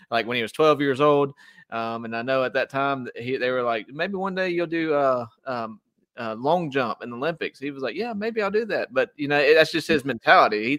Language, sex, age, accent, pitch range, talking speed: English, male, 30-49, American, 115-145 Hz, 265 wpm